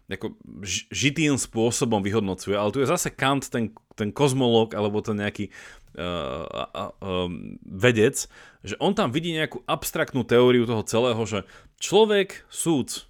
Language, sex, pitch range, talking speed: Slovak, male, 105-135 Hz, 140 wpm